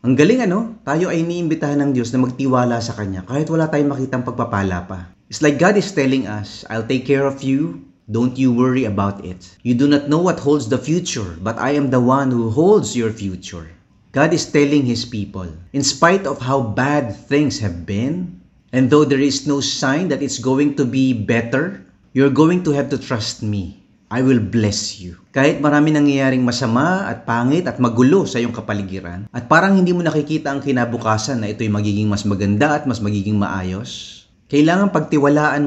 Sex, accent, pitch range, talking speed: male, Filipino, 105-150 Hz, 195 wpm